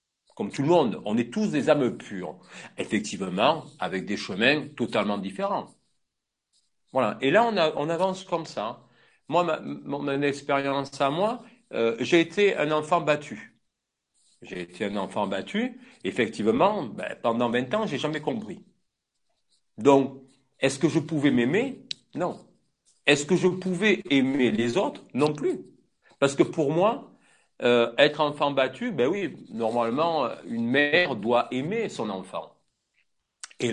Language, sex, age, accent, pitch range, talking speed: French, male, 50-69, French, 125-190 Hz, 150 wpm